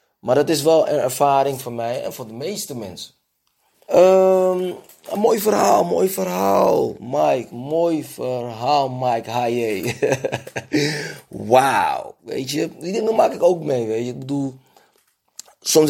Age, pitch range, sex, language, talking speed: 20-39, 110-135 Hz, male, Dutch, 140 wpm